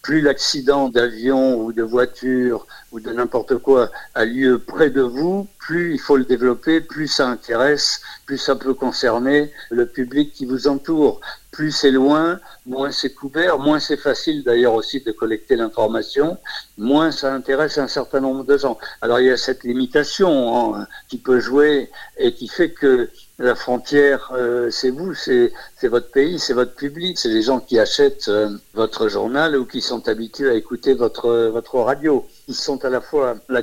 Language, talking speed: French, 185 wpm